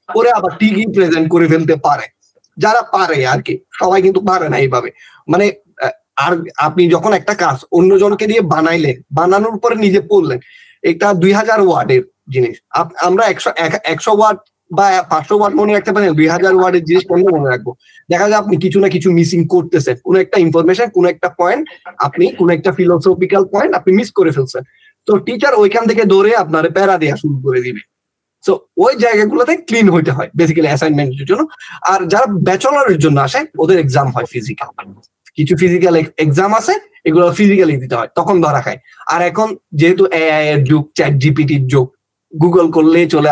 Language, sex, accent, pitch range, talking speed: Bengali, male, native, 160-215 Hz, 90 wpm